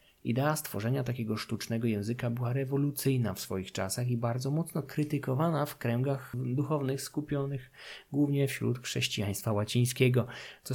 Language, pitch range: Polish, 100-135 Hz